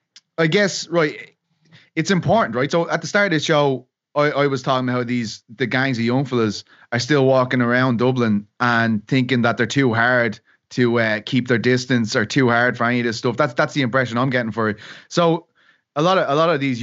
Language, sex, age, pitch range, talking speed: English, male, 20-39, 120-145 Hz, 230 wpm